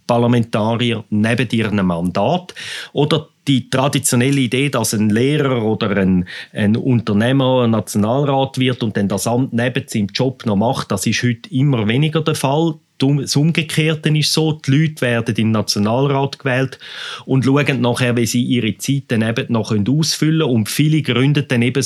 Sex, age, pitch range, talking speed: male, 30-49, 110-150 Hz, 165 wpm